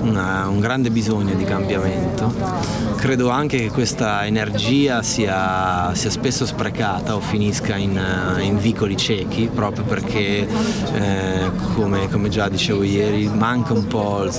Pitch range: 100-115 Hz